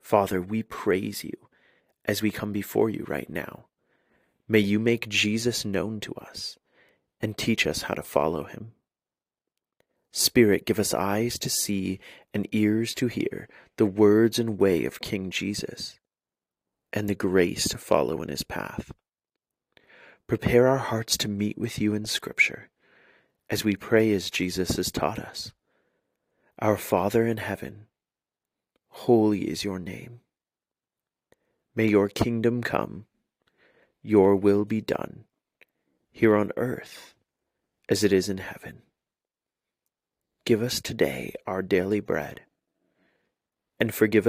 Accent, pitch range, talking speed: American, 100-115 Hz, 135 wpm